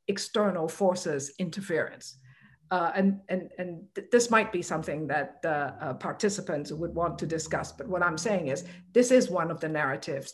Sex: female